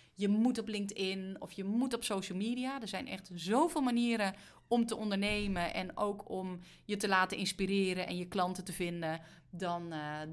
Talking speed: 185 wpm